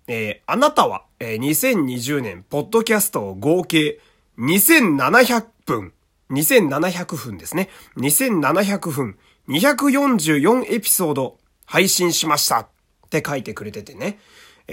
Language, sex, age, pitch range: Japanese, male, 30-49, 120-185 Hz